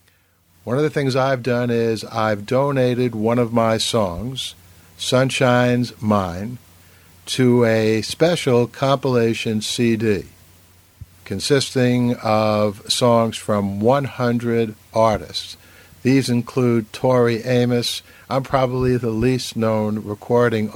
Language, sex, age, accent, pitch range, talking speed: English, male, 60-79, American, 100-125 Hz, 105 wpm